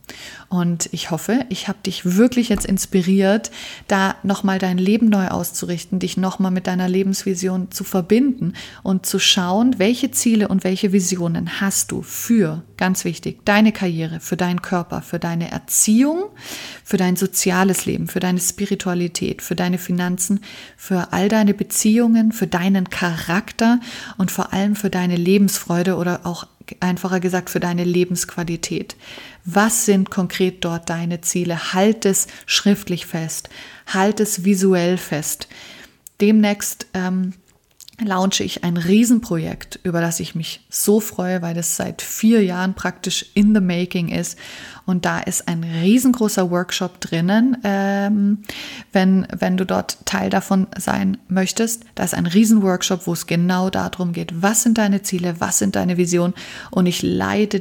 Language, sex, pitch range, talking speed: German, female, 180-205 Hz, 150 wpm